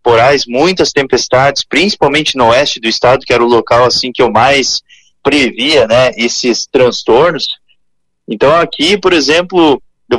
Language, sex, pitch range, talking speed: Portuguese, male, 120-160 Hz, 145 wpm